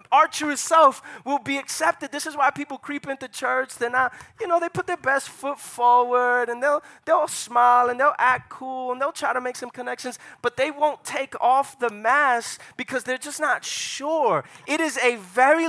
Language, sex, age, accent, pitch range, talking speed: English, male, 20-39, American, 225-280 Hz, 205 wpm